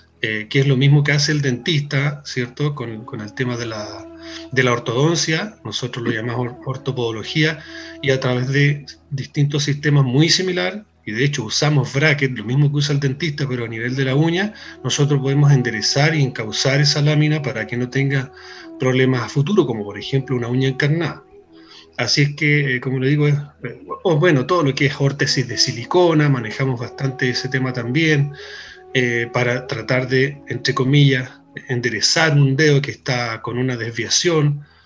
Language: Spanish